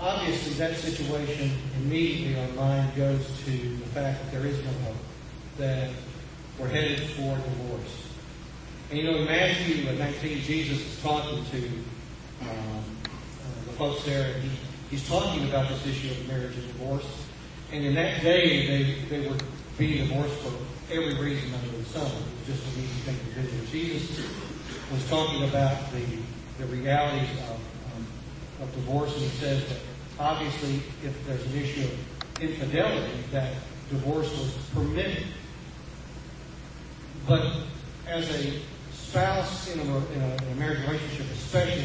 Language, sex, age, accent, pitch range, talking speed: English, male, 40-59, American, 130-150 Hz, 150 wpm